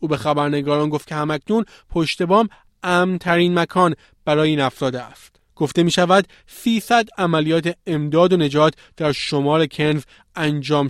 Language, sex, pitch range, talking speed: Persian, male, 145-175 Hz, 145 wpm